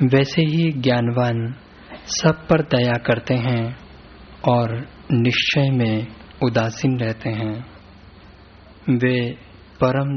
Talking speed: 95 wpm